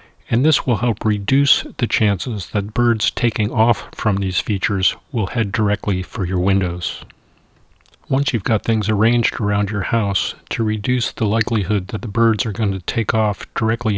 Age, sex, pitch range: 40-59, male, 100-120 Hz